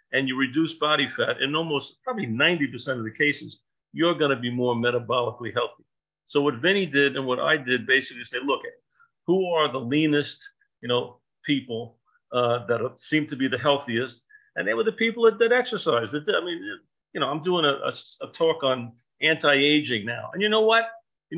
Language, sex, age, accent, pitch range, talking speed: English, male, 50-69, American, 125-175 Hz, 195 wpm